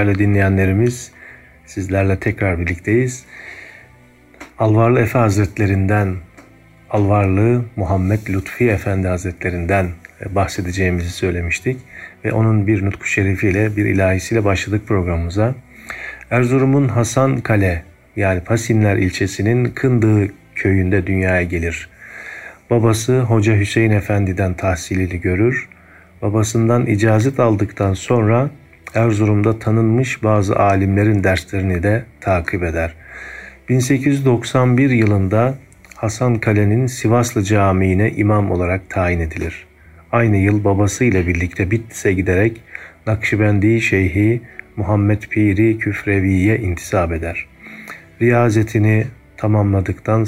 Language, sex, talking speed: Turkish, male, 90 wpm